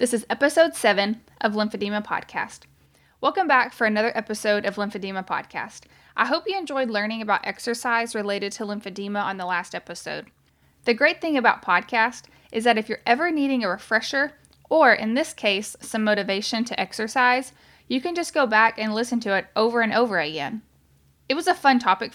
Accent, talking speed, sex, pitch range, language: American, 185 wpm, female, 205-265 Hz, English